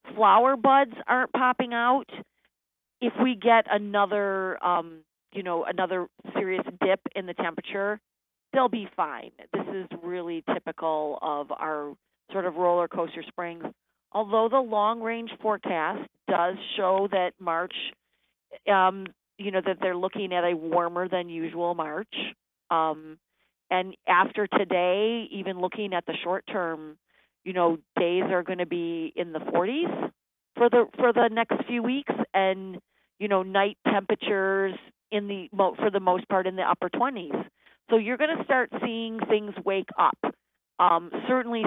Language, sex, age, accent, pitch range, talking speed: English, female, 40-59, American, 175-215 Hz, 150 wpm